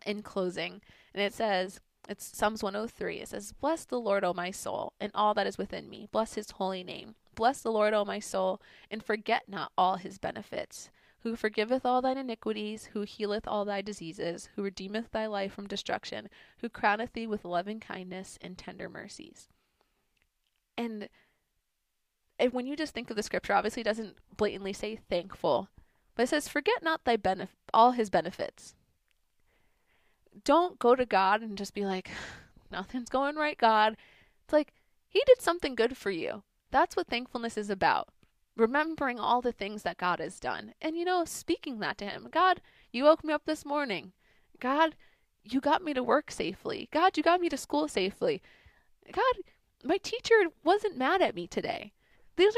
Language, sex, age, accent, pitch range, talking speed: English, female, 20-39, American, 200-280 Hz, 185 wpm